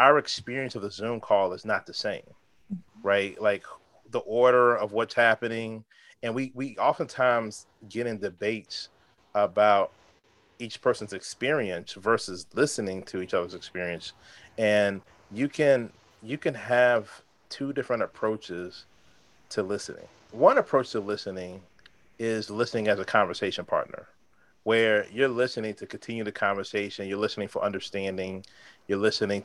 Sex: male